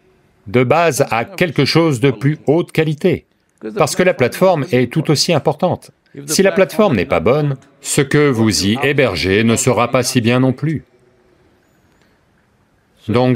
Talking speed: 160 wpm